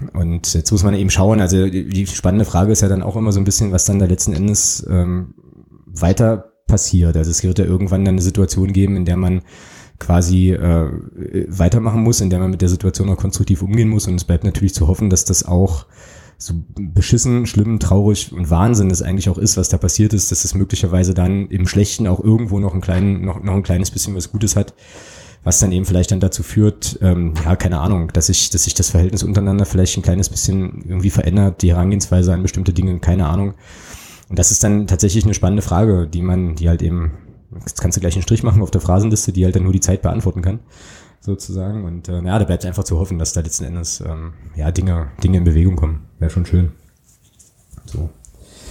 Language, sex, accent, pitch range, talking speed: German, male, German, 90-100 Hz, 220 wpm